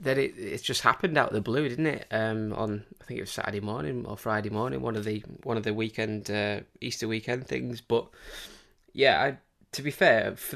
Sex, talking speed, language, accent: male, 225 wpm, English, British